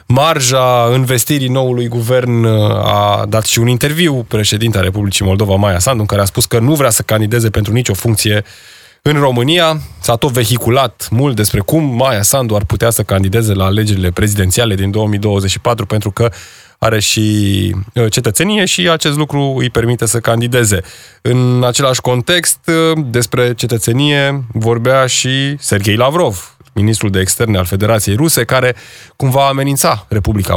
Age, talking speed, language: 20-39, 150 wpm, Romanian